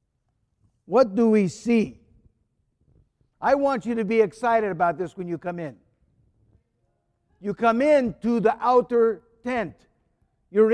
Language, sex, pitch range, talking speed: English, male, 165-235 Hz, 135 wpm